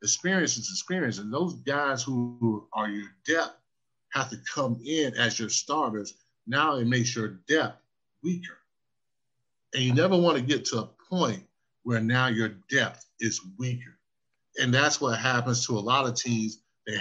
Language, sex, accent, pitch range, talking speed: English, male, American, 110-130 Hz, 175 wpm